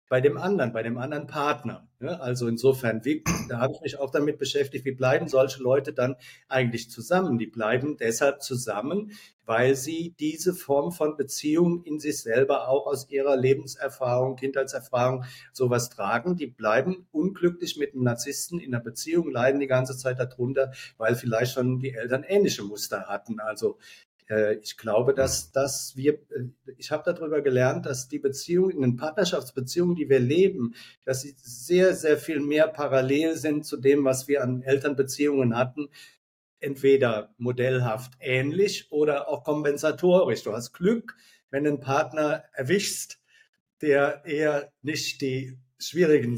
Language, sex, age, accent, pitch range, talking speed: German, male, 50-69, German, 125-150 Hz, 155 wpm